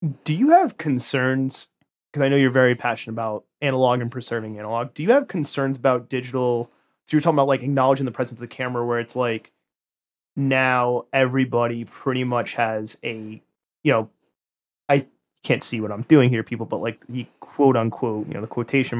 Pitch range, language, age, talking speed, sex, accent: 120-140 Hz, English, 30-49, 185 wpm, male, American